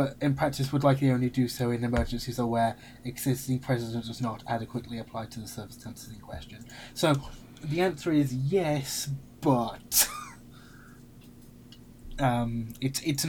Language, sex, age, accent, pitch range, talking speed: English, male, 20-39, British, 120-130 Hz, 145 wpm